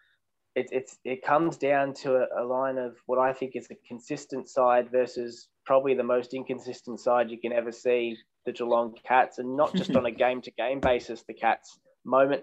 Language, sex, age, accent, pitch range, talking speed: English, male, 20-39, Australian, 120-135 Hz, 200 wpm